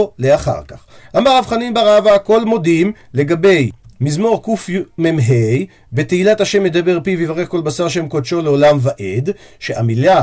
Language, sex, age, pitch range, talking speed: Hebrew, male, 50-69, 130-210 Hz, 125 wpm